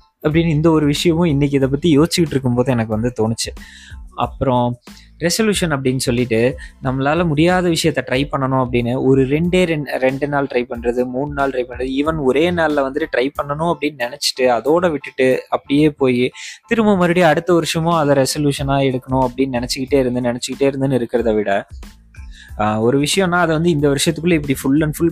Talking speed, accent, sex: 160 wpm, native, male